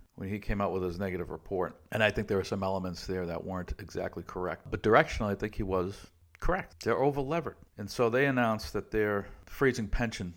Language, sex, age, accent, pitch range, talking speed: English, male, 50-69, American, 90-105 Hz, 215 wpm